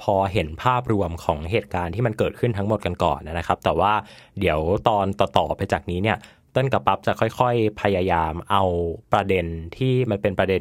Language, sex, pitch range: Thai, male, 100-135 Hz